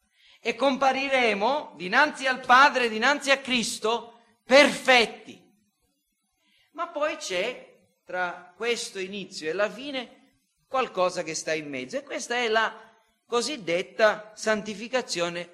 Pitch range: 200-270 Hz